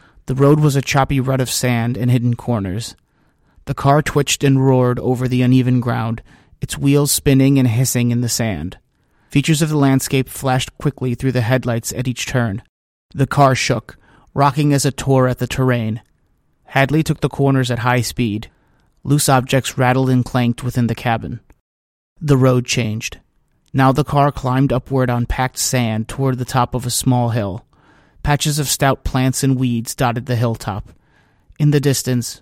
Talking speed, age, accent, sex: 175 wpm, 30-49, American, male